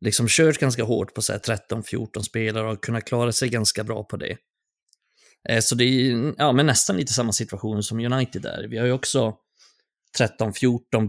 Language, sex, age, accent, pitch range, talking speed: Swedish, male, 30-49, native, 110-125 Hz, 180 wpm